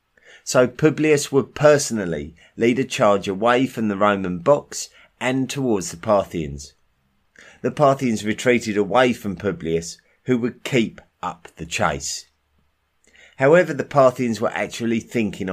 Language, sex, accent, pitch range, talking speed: English, male, British, 95-130 Hz, 130 wpm